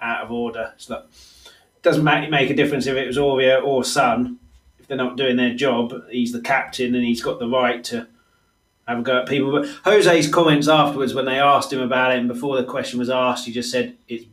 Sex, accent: male, British